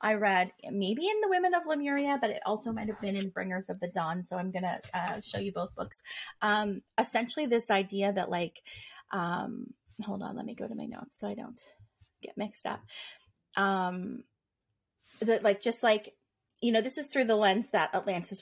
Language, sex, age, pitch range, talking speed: English, female, 30-49, 190-225 Hz, 200 wpm